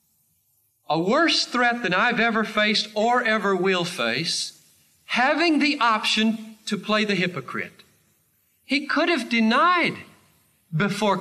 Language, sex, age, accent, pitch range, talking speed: English, male, 40-59, American, 175-265 Hz, 125 wpm